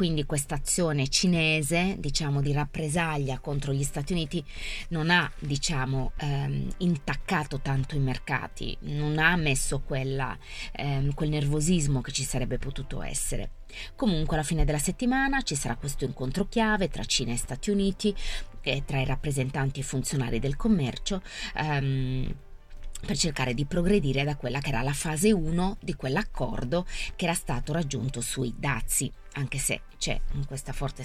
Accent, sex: native, female